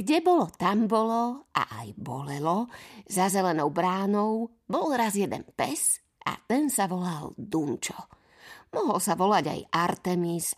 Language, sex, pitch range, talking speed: Slovak, female, 180-240 Hz, 135 wpm